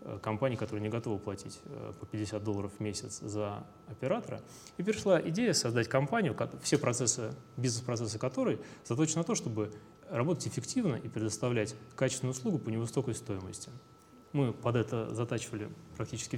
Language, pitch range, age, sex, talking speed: Russian, 110-130 Hz, 20-39, male, 140 wpm